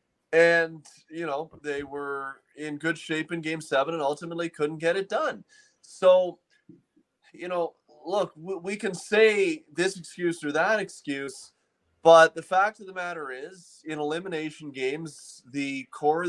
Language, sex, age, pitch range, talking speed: English, male, 20-39, 140-170 Hz, 155 wpm